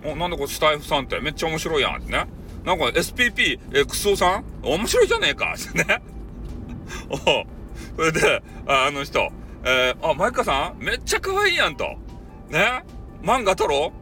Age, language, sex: 40-59, Japanese, male